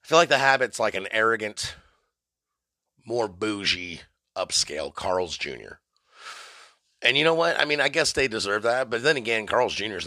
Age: 30-49